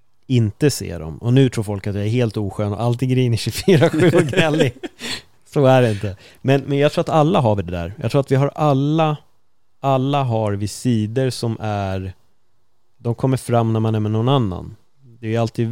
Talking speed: 205 wpm